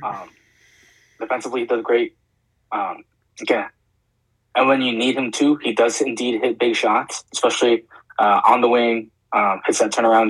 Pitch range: 110-120 Hz